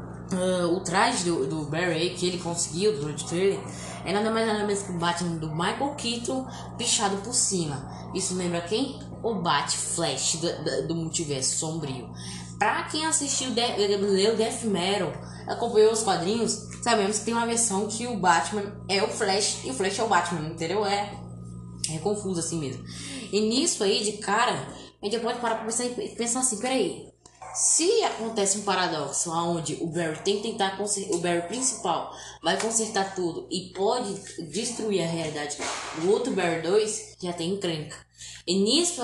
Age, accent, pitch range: 10-29, Brazilian, 170-230 Hz